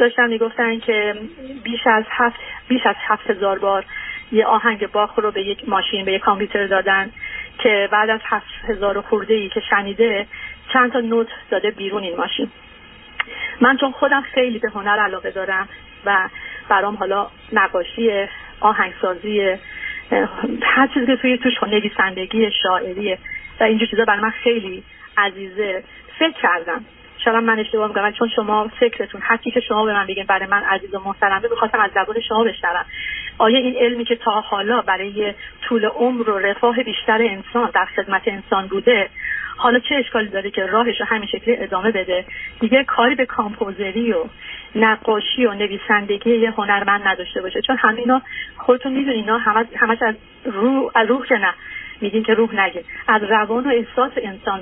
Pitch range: 205-240 Hz